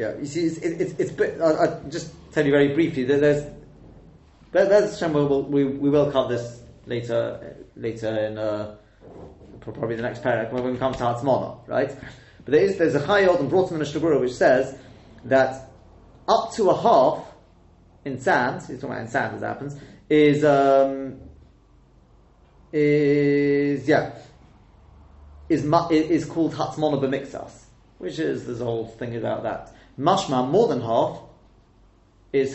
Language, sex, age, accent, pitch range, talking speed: English, male, 30-49, British, 120-150 Hz, 160 wpm